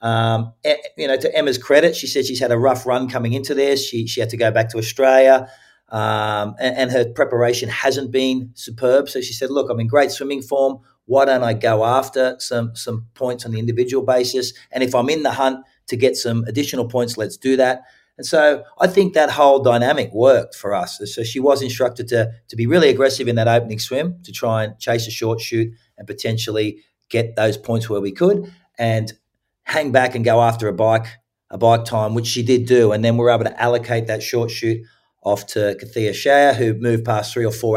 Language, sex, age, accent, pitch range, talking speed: English, male, 40-59, Australian, 115-135 Hz, 220 wpm